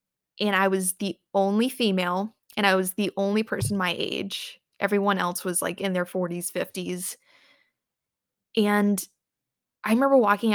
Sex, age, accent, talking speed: female, 20-39, American, 150 wpm